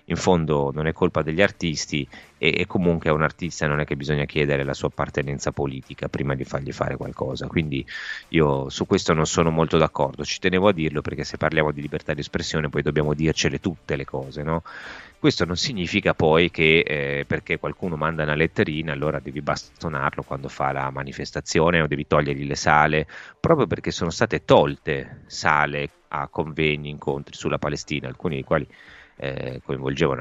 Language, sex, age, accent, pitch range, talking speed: Italian, male, 30-49, native, 70-80 Hz, 180 wpm